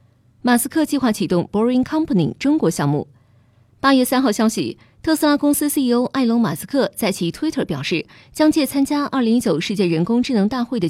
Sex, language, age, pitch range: female, Chinese, 20-39, 175-265 Hz